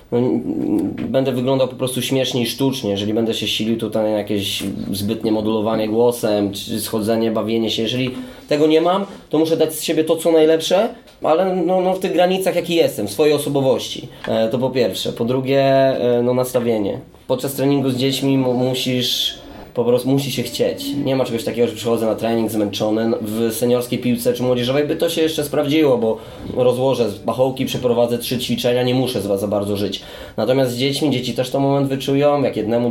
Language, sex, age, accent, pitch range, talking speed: Polish, male, 20-39, native, 105-130 Hz, 190 wpm